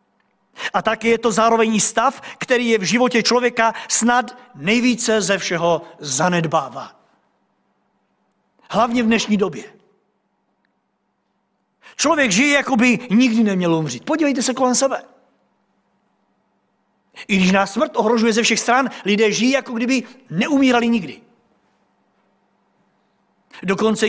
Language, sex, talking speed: Czech, male, 115 wpm